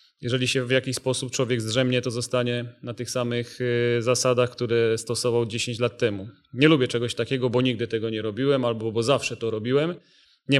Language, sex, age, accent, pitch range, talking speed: Polish, male, 30-49, native, 120-130 Hz, 185 wpm